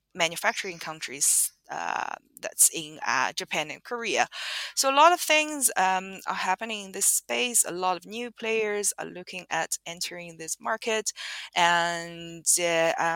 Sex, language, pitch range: female, English, 165-215 Hz